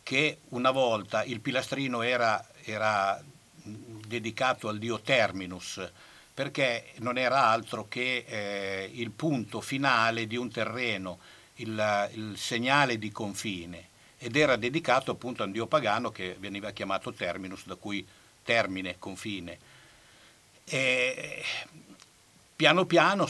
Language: Italian